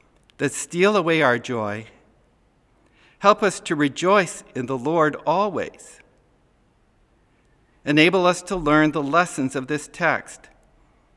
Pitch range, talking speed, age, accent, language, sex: 135-175 Hz, 120 wpm, 50-69, American, English, male